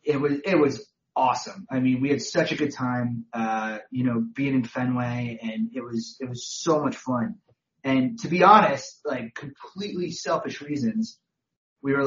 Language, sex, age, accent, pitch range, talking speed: English, male, 30-49, American, 120-170 Hz, 185 wpm